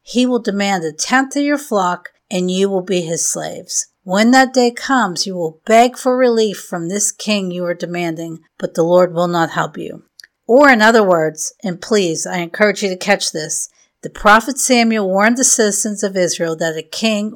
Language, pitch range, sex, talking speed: English, 180-240 Hz, female, 205 wpm